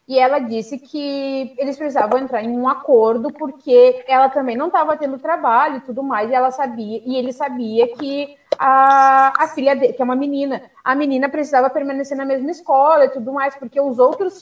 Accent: Brazilian